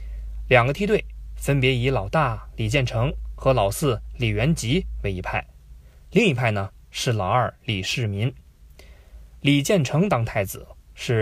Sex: male